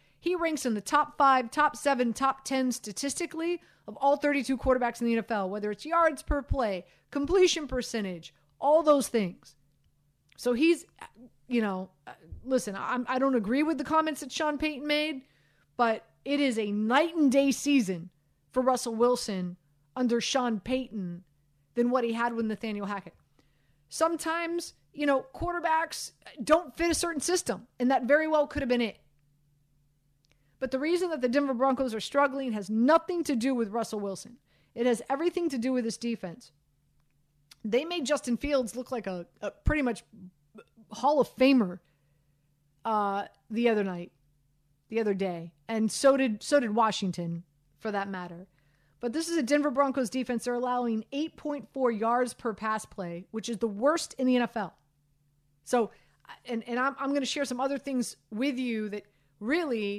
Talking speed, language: 170 wpm, English